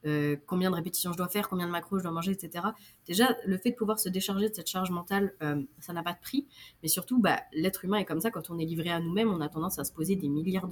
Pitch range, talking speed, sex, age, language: 160-200 Hz, 295 wpm, female, 20-39, French